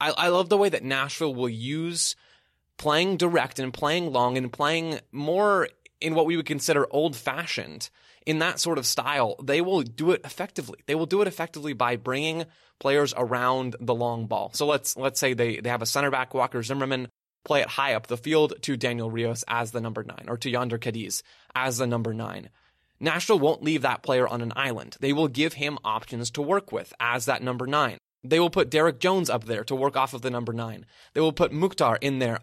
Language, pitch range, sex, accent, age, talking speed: English, 120-155 Hz, male, American, 20-39, 215 wpm